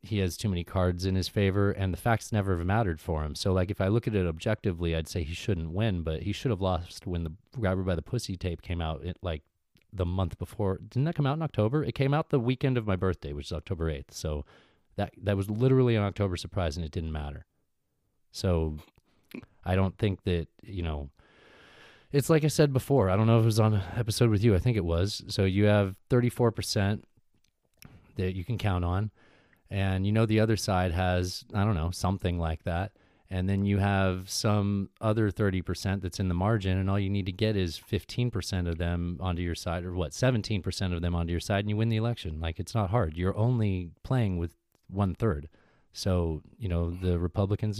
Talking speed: 225 wpm